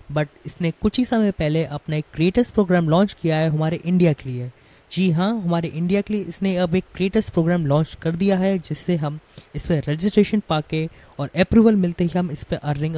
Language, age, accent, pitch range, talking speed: Hindi, 20-39, native, 155-200 Hz, 215 wpm